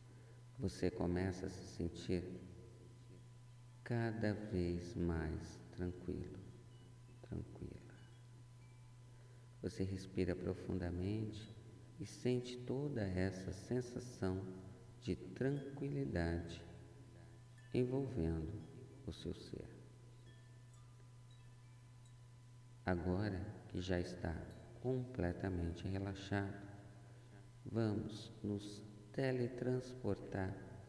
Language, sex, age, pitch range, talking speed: Portuguese, male, 50-69, 95-120 Hz, 65 wpm